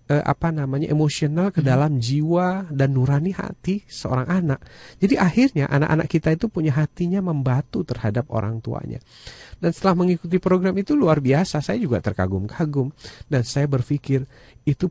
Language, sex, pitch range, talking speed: Indonesian, male, 125-170 Hz, 145 wpm